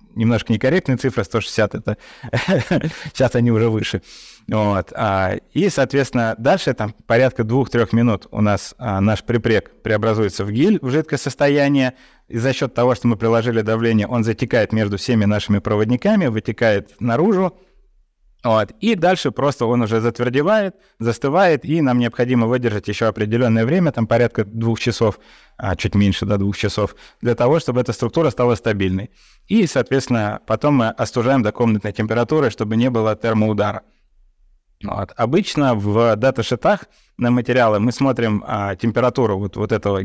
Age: 20-39